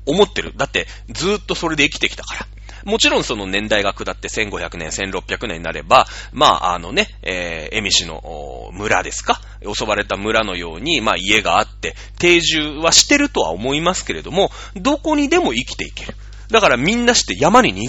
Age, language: 30-49, Japanese